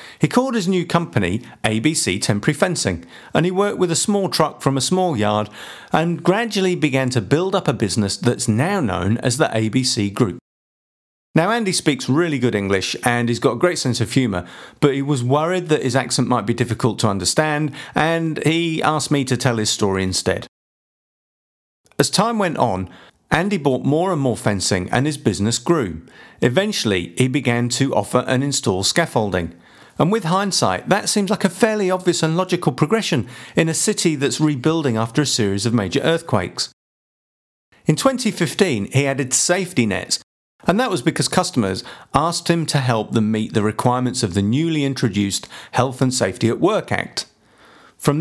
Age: 50-69